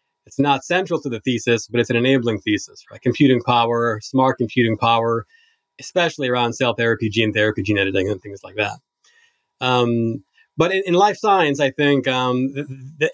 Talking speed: 185 wpm